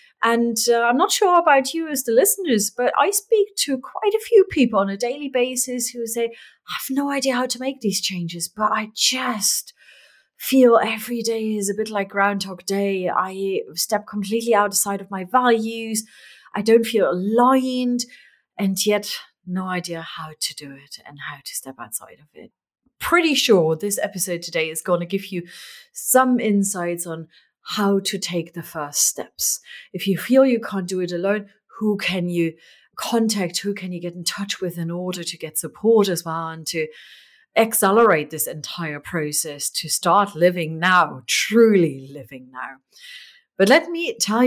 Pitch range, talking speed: 180-255 Hz, 180 wpm